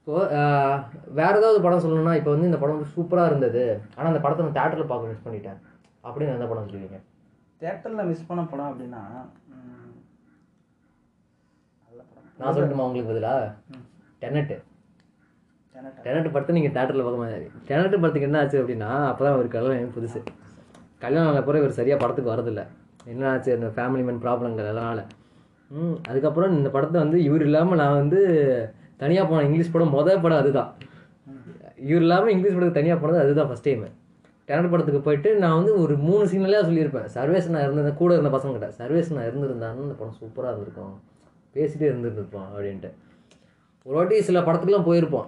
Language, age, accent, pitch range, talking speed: Tamil, 20-39, native, 120-165 Hz, 155 wpm